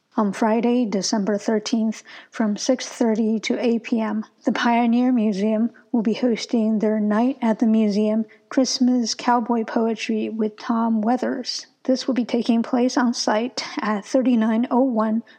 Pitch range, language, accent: 225-250 Hz, English, American